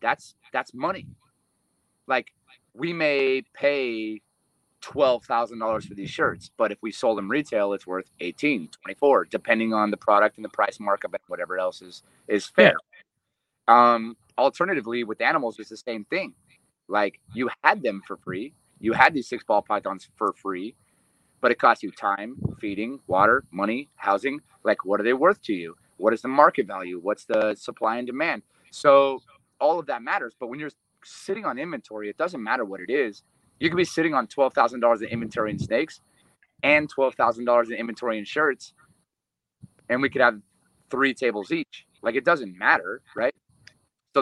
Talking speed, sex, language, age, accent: 180 wpm, male, English, 30-49, American